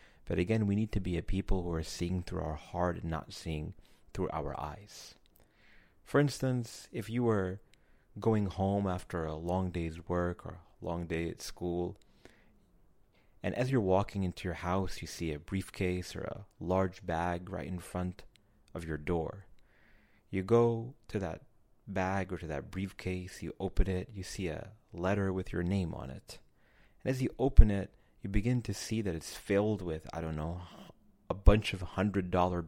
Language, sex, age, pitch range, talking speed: English, male, 30-49, 85-105 Hz, 185 wpm